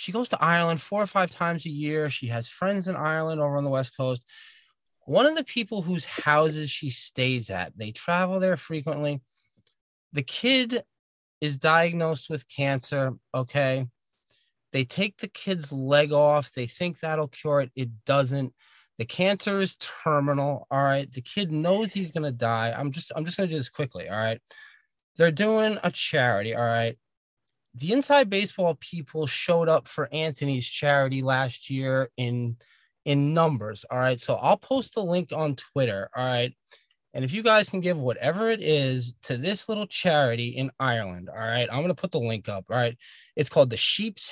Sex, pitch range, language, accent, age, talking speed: male, 130-180 Hz, English, American, 20-39, 185 wpm